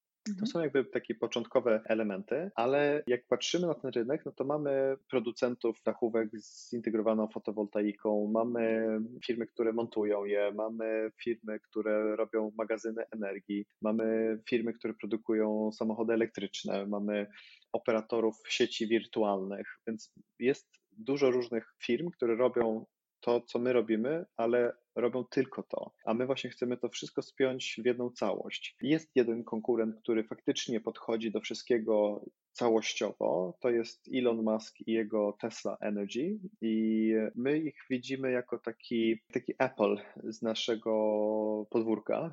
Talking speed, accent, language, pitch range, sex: 135 wpm, native, Polish, 110-125 Hz, male